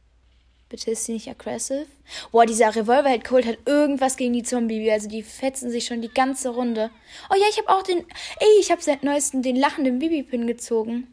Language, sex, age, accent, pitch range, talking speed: German, female, 10-29, German, 205-260 Hz, 195 wpm